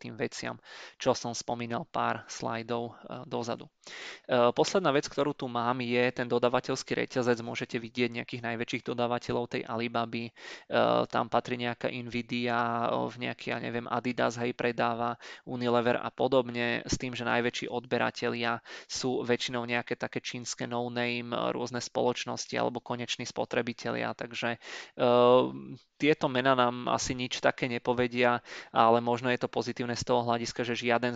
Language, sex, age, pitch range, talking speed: Czech, male, 20-39, 120-125 Hz, 135 wpm